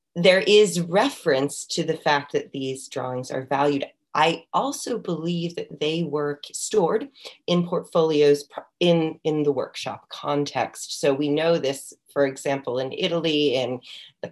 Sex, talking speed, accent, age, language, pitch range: female, 145 wpm, American, 30-49, English, 135-165 Hz